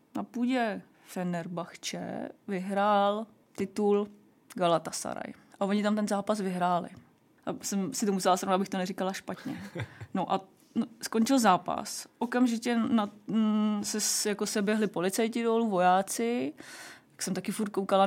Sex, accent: female, native